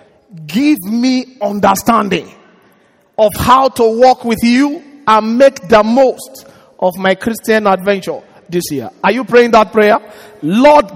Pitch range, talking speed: 220-295 Hz, 135 wpm